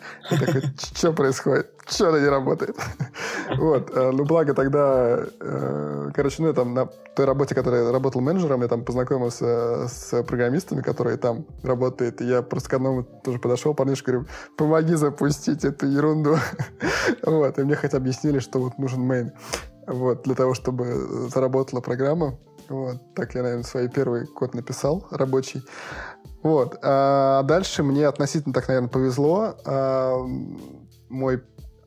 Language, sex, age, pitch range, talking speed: Russian, male, 20-39, 125-145 Hz, 135 wpm